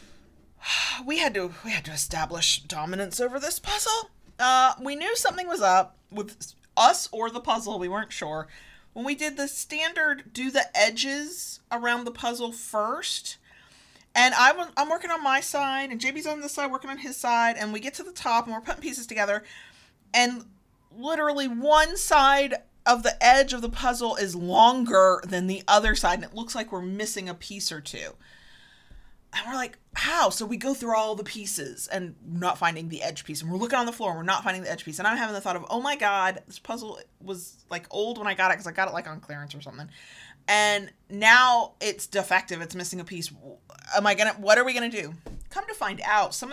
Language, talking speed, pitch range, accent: English, 220 wpm, 185-270 Hz, American